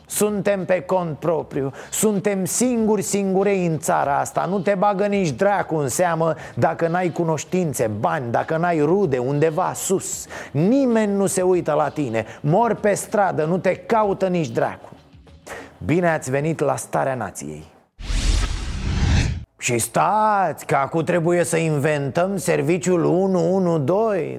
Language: Romanian